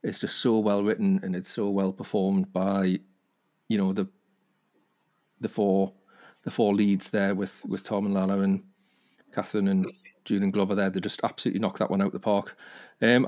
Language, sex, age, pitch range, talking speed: English, male, 40-59, 100-125 Hz, 195 wpm